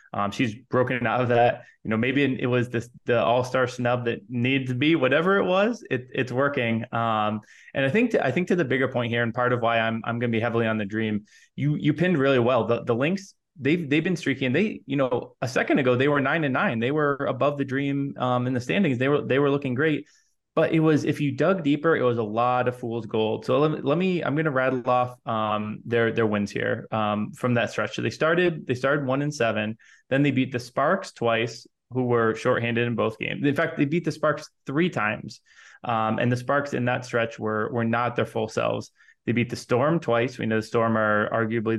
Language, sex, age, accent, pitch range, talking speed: English, male, 20-39, American, 115-140 Hz, 245 wpm